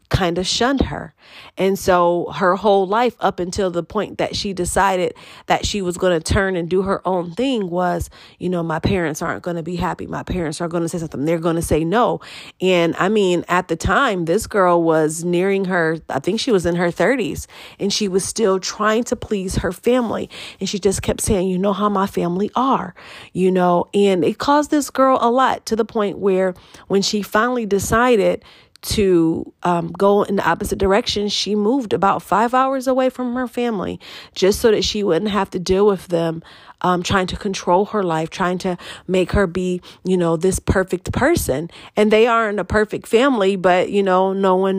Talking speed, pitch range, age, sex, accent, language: 210 wpm, 175-205 Hz, 40-59, female, American, English